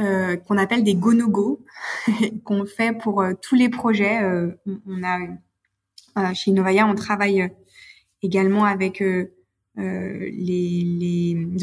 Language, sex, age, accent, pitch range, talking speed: French, female, 20-39, French, 190-215 Hz, 135 wpm